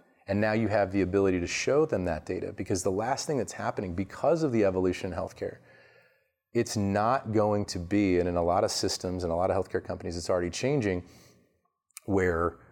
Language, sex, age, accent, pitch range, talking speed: English, male, 30-49, American, 90-105 Hz, 210 wpm